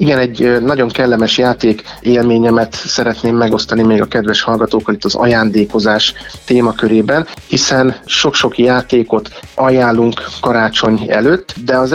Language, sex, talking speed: Hungarian, male, 125 wpm